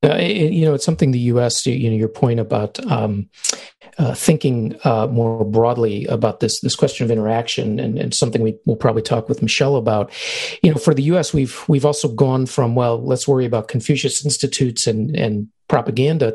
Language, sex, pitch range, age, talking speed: English, male, 110-145 Hz, 40-59, 200 wpm